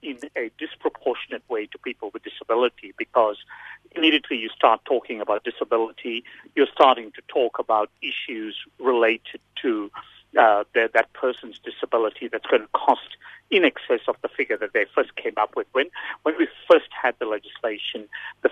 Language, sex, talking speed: English, male, 160 wpm